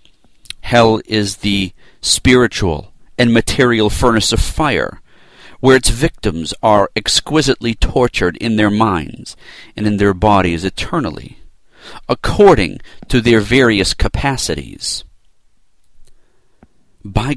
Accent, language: American, English